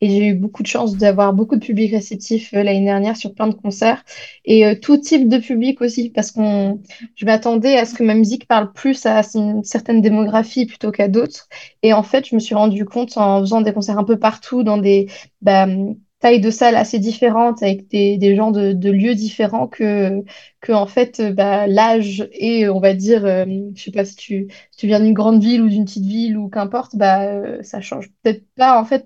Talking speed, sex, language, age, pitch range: 225 wpm, female, French, 20-39, 205-235 Hz